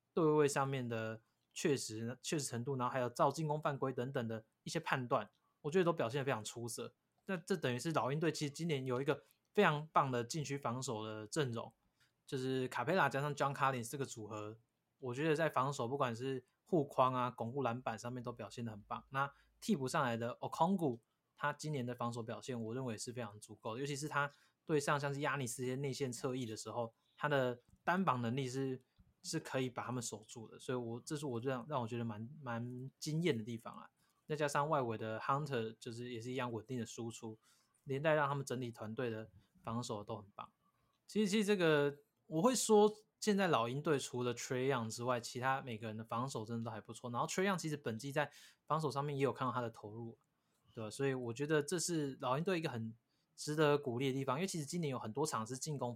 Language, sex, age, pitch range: Chinese, male, 20-39, 120-150 Hz